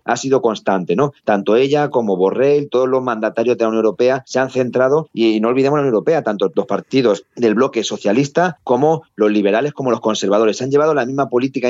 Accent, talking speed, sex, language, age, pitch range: Spanish, 215 wpm, male, Spanish, 30-49, 110-145 Hz